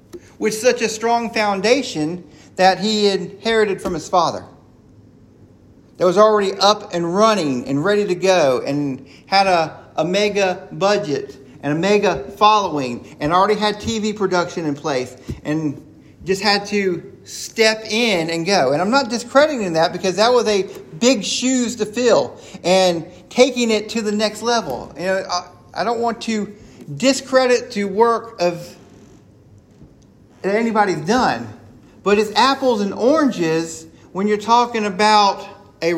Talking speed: 150 wpm